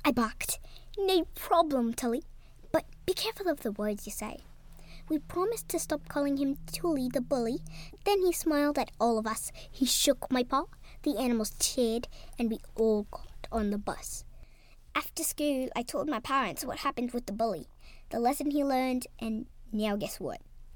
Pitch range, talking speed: 235-345 Hz, 180 wpm